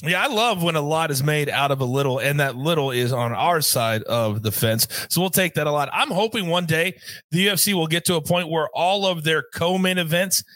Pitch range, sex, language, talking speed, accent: 140-190 Hz, male, English, 255 wpm, American